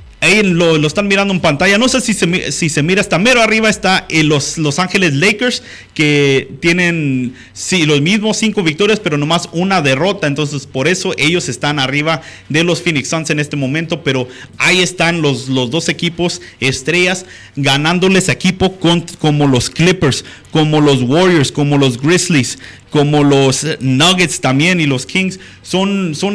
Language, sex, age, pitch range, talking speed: Spanish, male, 30-49, 145-185 Hz, 165 wpm